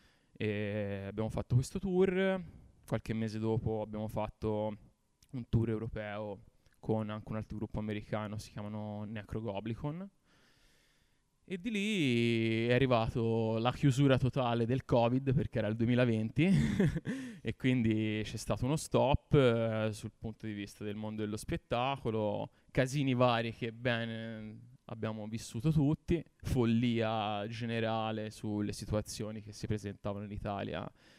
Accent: native